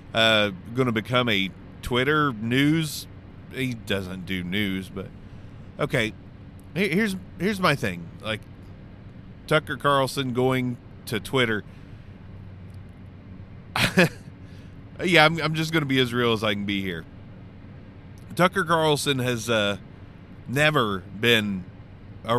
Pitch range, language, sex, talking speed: 95-130 Hz, English, male, 120 wpm